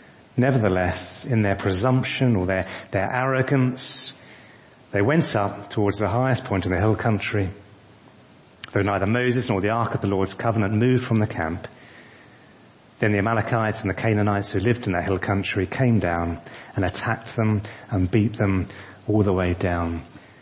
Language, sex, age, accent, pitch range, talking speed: English, male, 30-49, British, 95-120 Hz, 170 wpm